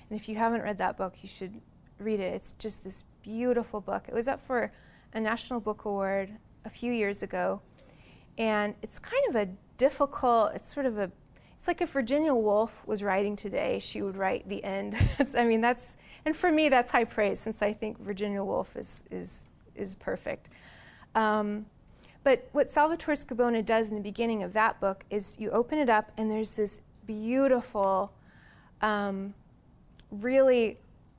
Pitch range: 205-250 Hz